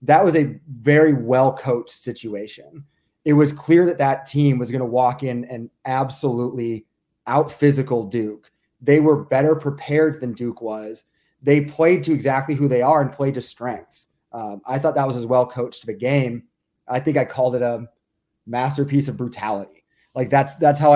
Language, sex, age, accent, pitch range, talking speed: English, male, 30-49, American, 120-145 Hz, 180 wpm